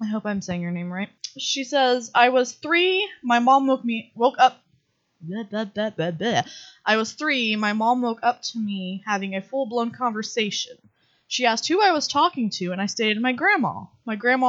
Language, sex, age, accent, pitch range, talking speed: English, female, 20-39, American, 185-240 Hz, 205 wpm